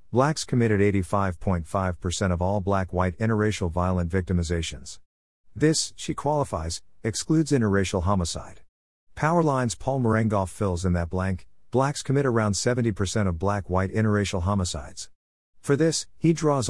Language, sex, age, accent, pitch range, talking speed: English, male, 50-69, American, 90-115 Hz, 120 wpm